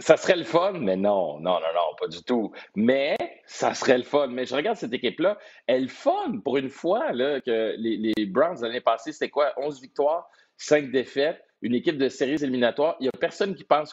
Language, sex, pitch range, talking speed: French, male, 115-150 Hz, 220 wpm